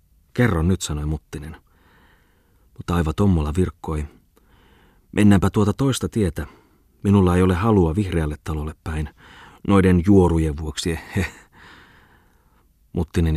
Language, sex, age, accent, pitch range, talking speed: Finnish, male, 30-49, native, 80-95 Hz, 105 wpm